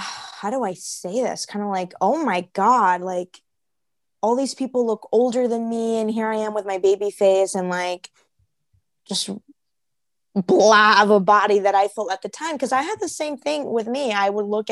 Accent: American